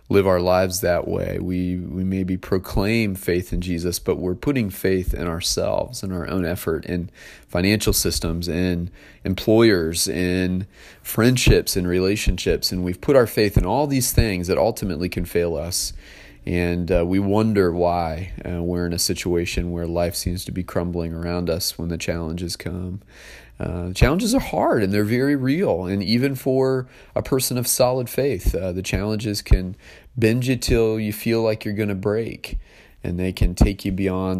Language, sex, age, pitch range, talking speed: English, male, 30-49, 85-105 Hz, 180 wpm